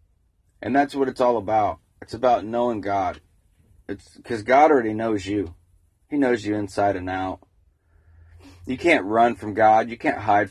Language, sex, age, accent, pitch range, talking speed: English, male, 30-49, American, 90-125 Hz, 170 wpm